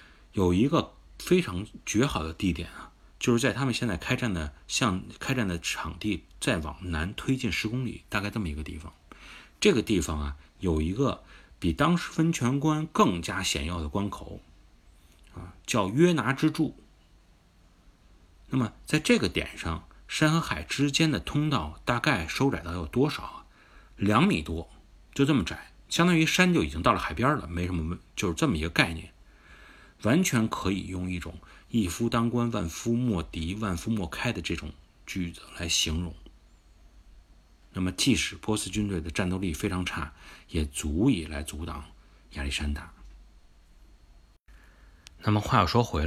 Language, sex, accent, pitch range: Chinese, male, native, 80-115 Hz